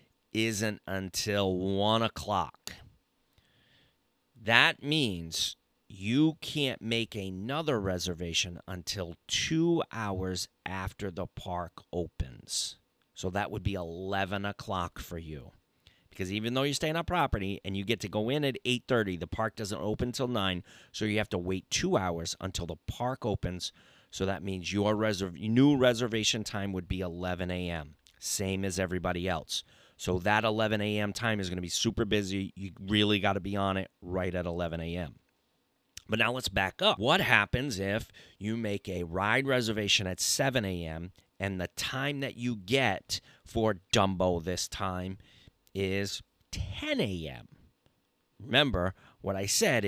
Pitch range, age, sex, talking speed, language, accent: 95-115 Hz, 30-49, male, 155 wpm, English, American